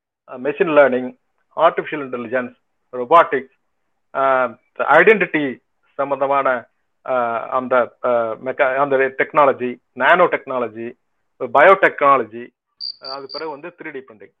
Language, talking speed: Tamil, 100 wpm